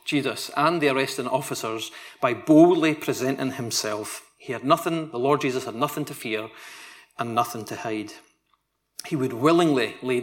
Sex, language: male, English